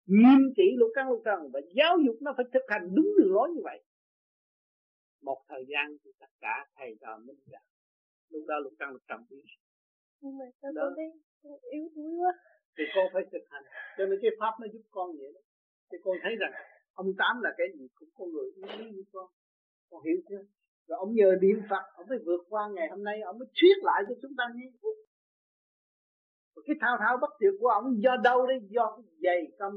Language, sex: Vietnamese, male